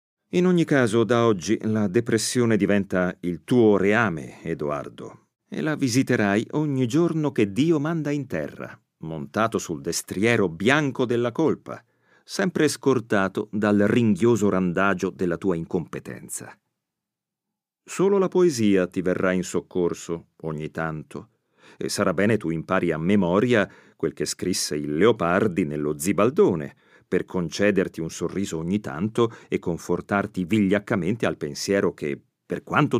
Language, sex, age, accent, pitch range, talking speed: Italian, male, 40-59, native, 95-140 Hz, 135 wpm